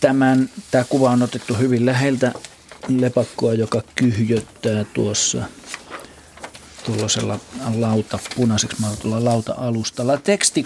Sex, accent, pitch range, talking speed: male, native, 105-125 Hz, 100 wpm